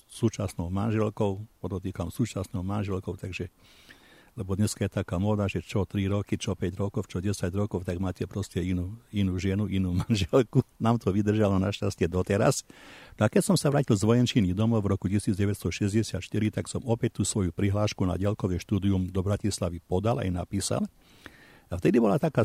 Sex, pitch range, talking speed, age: male, 95-115 Hz, 170 wpm, 60-79